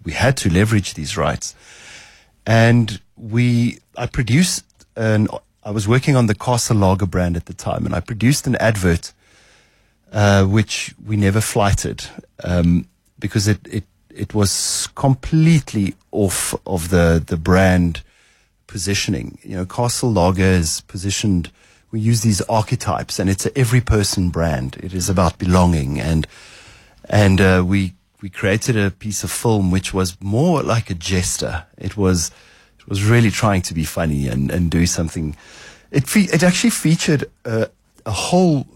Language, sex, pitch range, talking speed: English, male, 90-120 Hz, 160 wpm